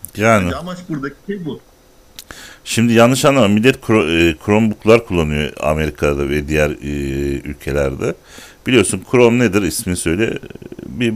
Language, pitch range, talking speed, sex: Turkish, 85-110 Hz, 100 wpm, male